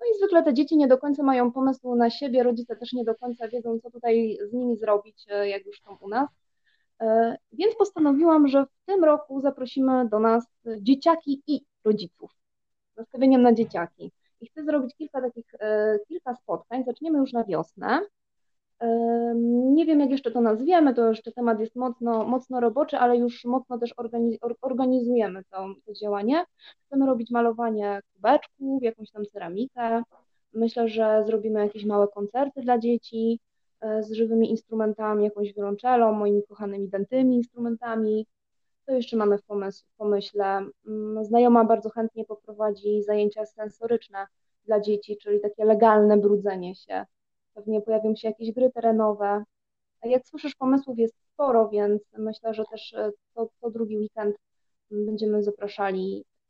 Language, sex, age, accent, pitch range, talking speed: Polish, female, 20-39, native, 210-250 Hz, 145 wpm